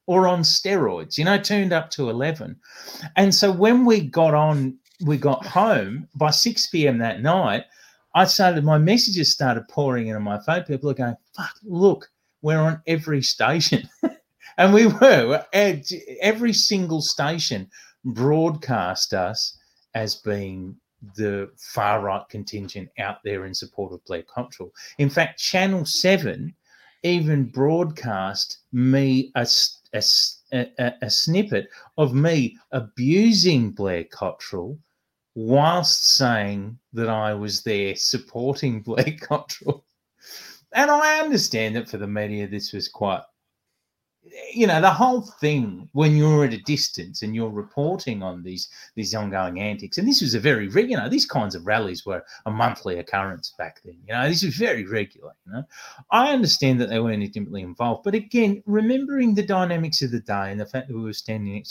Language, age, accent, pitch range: English, 30-49, Australian, 110-180 Hz